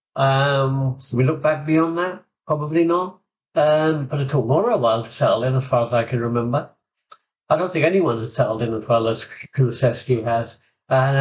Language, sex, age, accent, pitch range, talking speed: English, male, 50-69, British, 125-145 Hz, 210 wpm